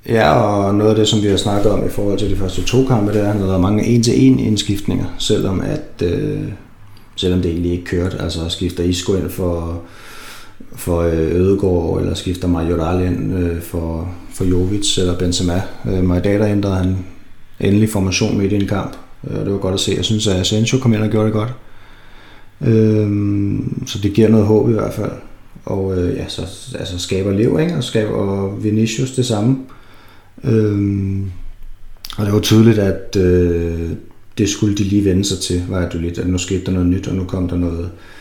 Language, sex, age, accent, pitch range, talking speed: Danish, male, 30-49, native, 90-105 Hz, 195 wpm